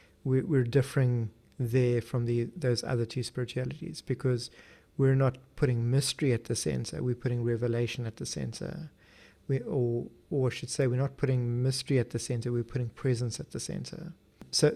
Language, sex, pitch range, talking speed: English, male, 120-145 Hz, 175 wpm